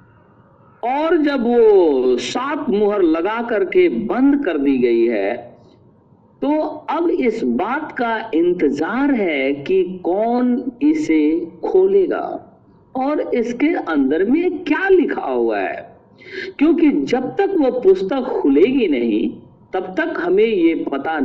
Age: 50-69